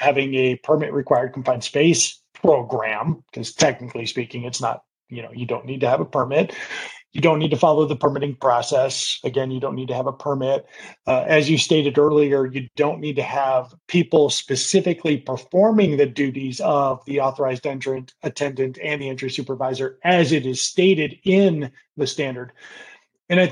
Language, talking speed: English, 180 wpm